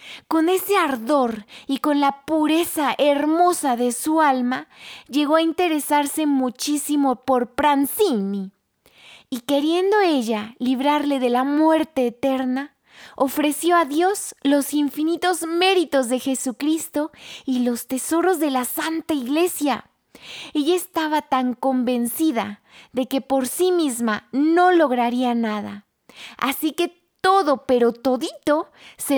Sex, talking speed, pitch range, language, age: female, 120 wpm, 270-330 Hz, Spanish, 20-39